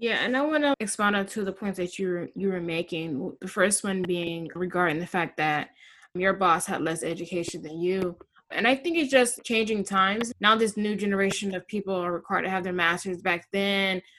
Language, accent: English, American